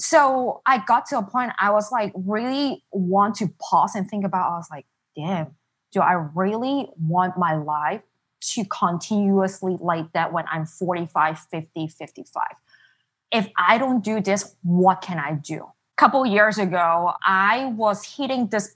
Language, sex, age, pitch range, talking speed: English, female, 20-39, 175-225 Hz, 165 wpm